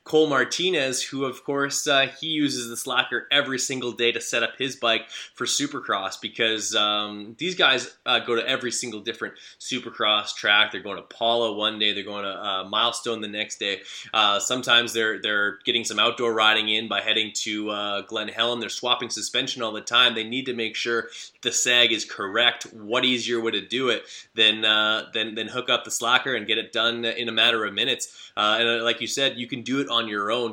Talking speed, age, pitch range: 220 wpm, 20-39, 105-120 Hz